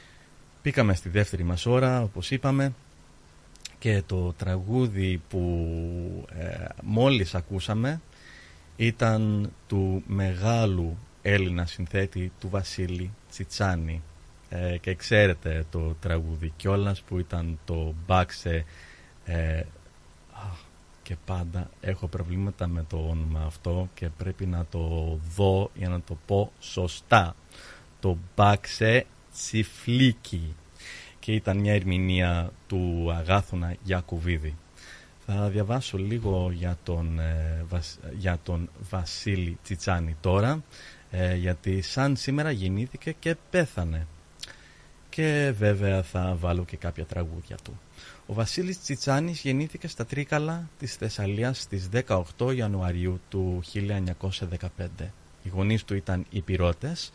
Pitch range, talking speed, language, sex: 85-105 Hz, 110 wpm, Greek, male